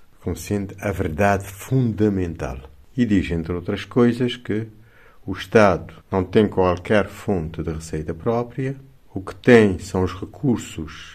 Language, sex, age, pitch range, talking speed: Portuguese, male, 60-79, 80-115 Hz, 135 wpm